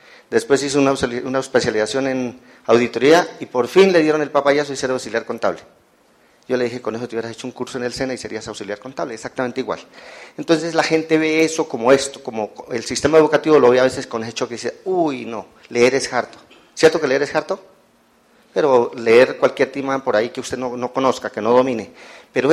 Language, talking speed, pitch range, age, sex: Spanish, 215 wpm, 125-155 Hz, 40-59, male